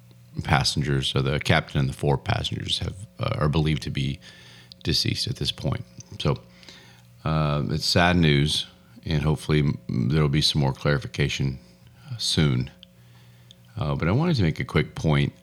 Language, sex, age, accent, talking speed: English, male, 40-59, American, 160 wpm